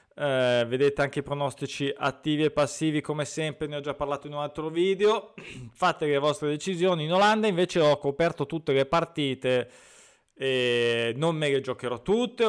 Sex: male